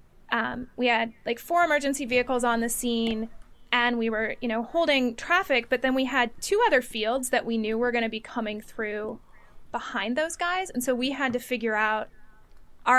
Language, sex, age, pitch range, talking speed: English, female, 20-39, 230-275 Hz, 205 wpm